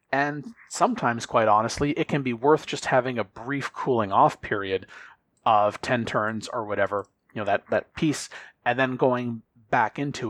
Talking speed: 175 wpm